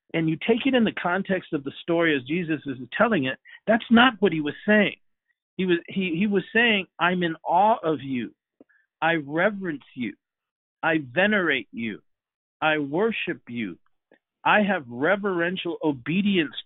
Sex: male